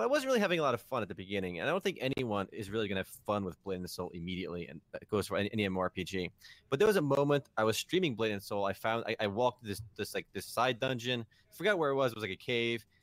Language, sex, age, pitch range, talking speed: English, male, 20-39, 110-155 Hz, 300 wpm